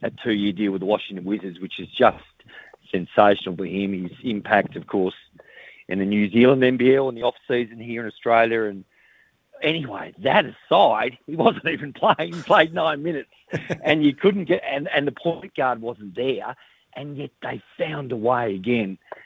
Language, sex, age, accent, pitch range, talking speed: English, male, 50-69, Australian, 105-140 Hz, 180 wpm